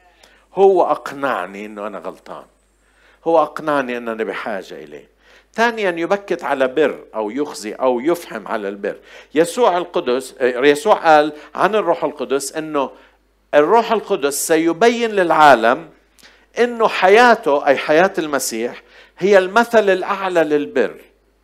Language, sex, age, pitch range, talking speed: Arabic, male, 50-69, 140-210 Hz, 120 wpm